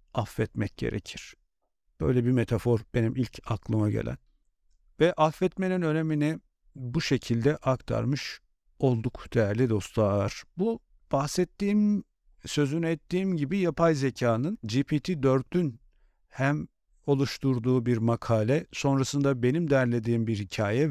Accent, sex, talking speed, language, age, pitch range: native, male, 105 wpm, Turkish, 50-69, 115-150 Hz